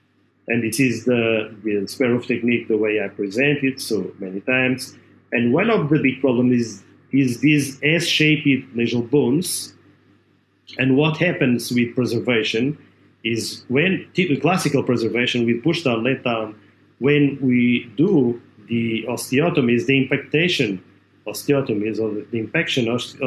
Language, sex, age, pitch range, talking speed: English, male, 40-59, 115-140 Hz, 140 wpm